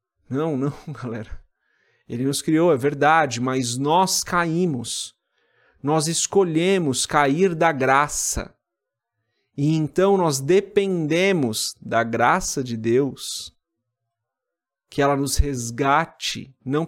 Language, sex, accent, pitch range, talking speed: Portuguese, male, Brazilian, 130-165 Hz, 105 wpm